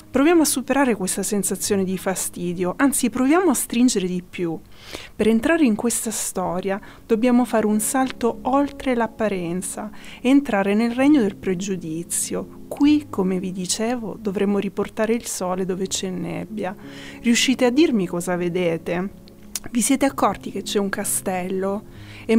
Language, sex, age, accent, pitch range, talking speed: Italian, female, 20-39, native, 185-235 Hz, 140 wpm